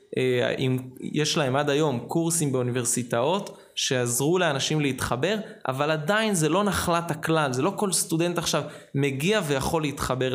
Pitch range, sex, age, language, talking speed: 125-160 Hz, male, 20-39, Hebrew, 140 wpm